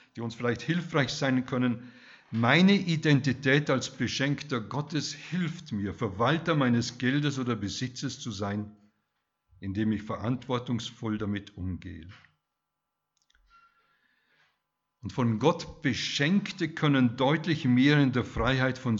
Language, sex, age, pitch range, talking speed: German, male, 60-79, 110-150 Hz, 115 wpm